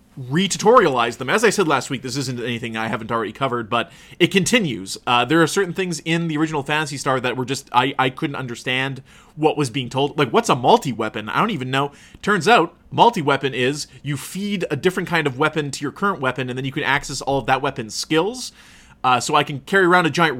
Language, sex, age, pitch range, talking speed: English, male, 30-49, 130-165 Hz, 240 wpm